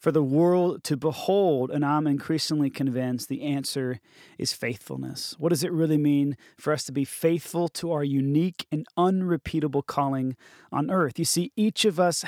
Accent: American